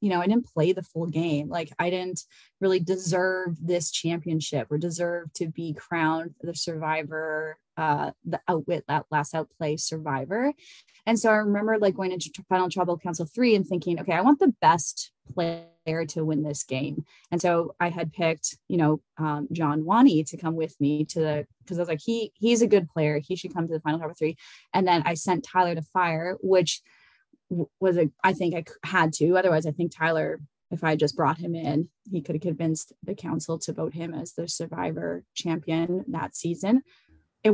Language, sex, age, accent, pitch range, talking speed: English, female, 20-39, American, 160-190 Hz, 205 wpm